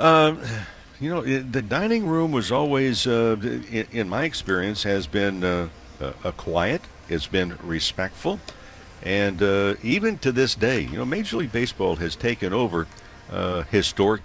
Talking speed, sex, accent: 150 wpm, male, American